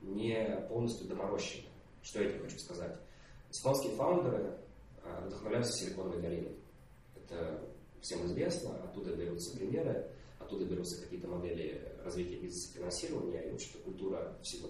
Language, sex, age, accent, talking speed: Russian, male, 20-39, native, 125 wpm